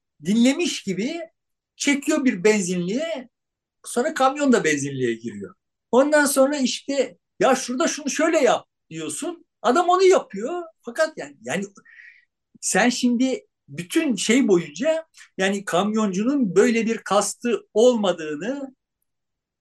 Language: Turkish